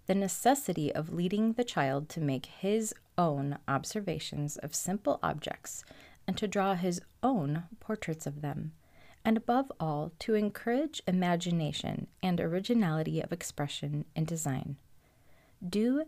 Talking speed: 130 wpm